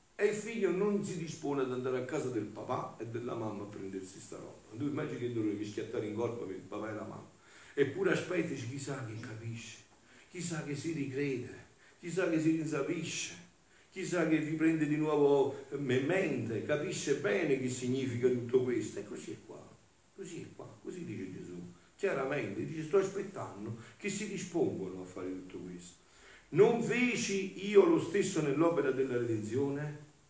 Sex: male